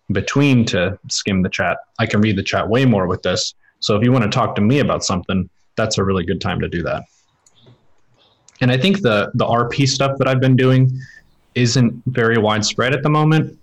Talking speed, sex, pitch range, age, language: 215 wpm, male, 95-115 Hz, 20-39, English